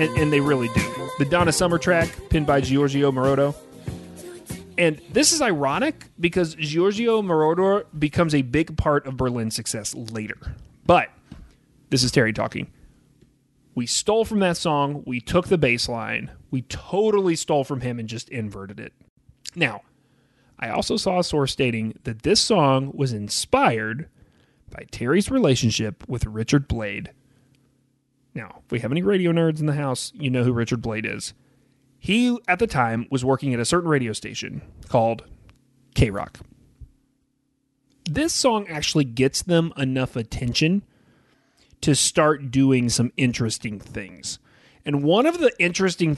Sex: male